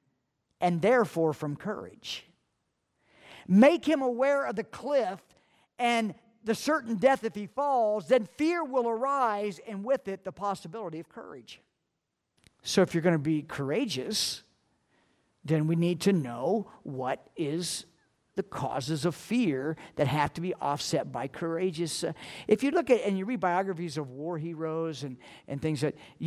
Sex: male